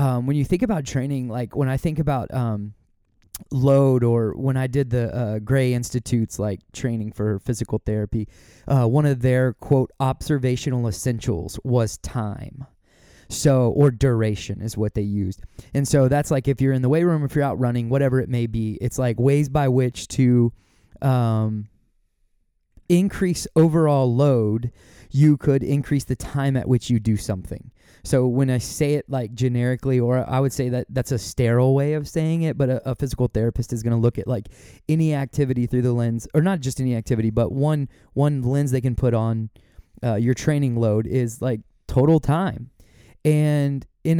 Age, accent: 20-39, American